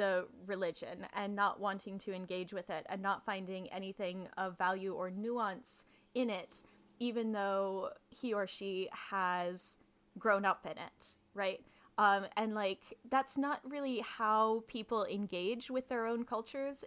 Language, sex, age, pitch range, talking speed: English, female, 10-29, 195-240 Hz, 155 wpm